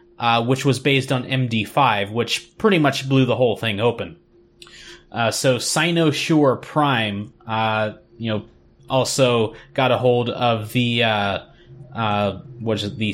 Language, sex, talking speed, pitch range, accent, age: English, male, 145 wpm, 110-130 Hz, American, 20-39